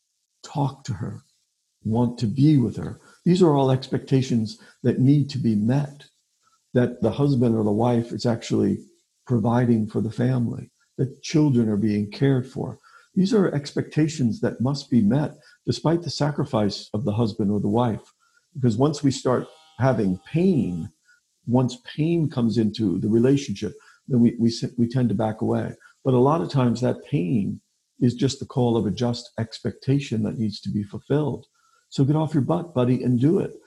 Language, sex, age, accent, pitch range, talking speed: English, male, 50-69, American, 115-145 Hz, 180 wpm